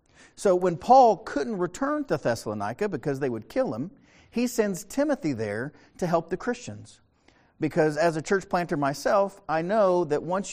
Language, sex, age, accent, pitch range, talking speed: English, male, 50-69, American, 130-190 Hz, 170 wpm